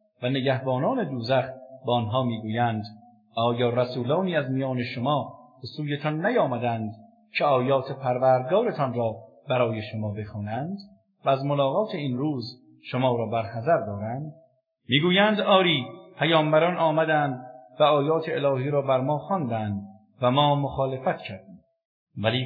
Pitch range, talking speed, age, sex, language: 120-165 Hz, 125 wpm, 50-69, male, English